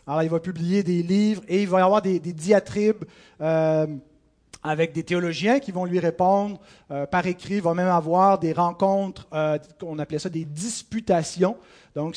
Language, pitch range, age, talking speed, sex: French, 160-195 Hz, 30-49, 185 wpm, male